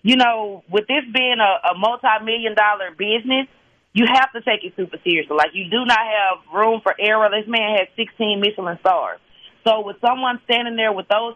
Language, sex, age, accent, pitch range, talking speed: English, female, 30-49, American, 210-250 Hz, 200 wpm